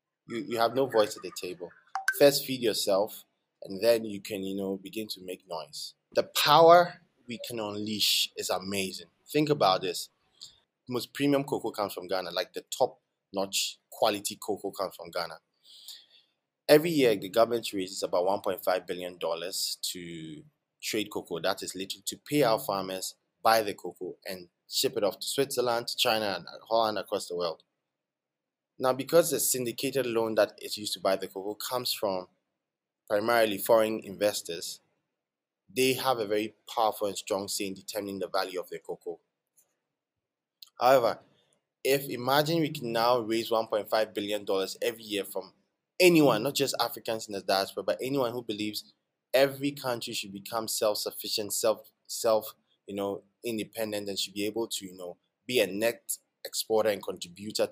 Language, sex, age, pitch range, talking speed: English, male, 20-39, 100-130 Hz, 165 wpm